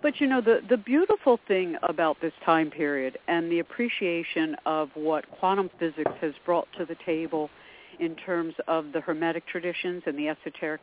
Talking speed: 175 wpm